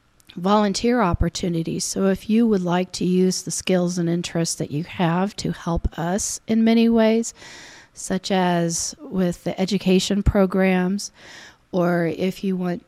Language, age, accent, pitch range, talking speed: English, 40-59, American, 175-200 Hz, 150 wpm